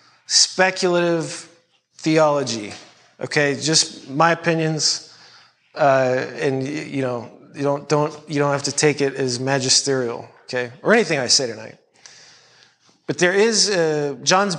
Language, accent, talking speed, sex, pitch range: English, American, 130 wpm, male, 145-170 Hz